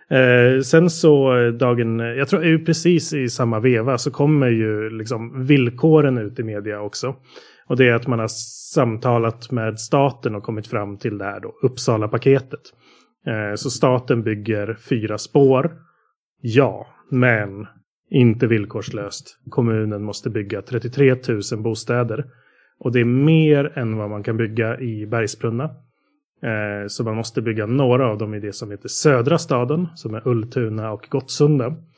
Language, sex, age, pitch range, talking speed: Swedish, male, 30-49, 115-140 Hz, 155 wpm